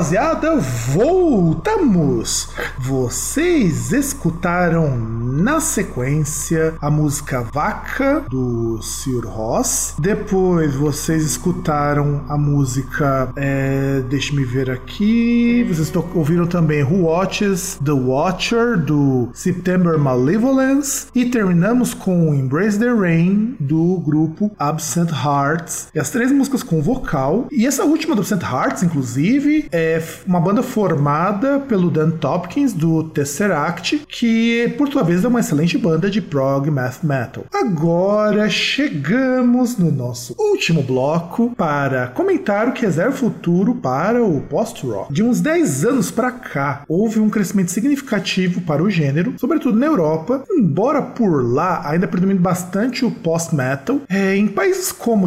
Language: Portuguese